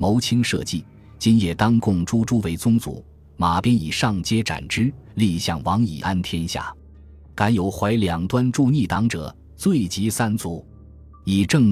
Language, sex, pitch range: Chinese, male, 85-115 Hz